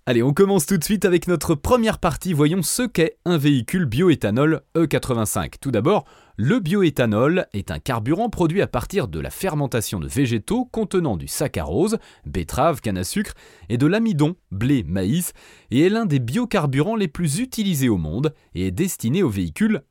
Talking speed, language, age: 180 wpm, French, 30-49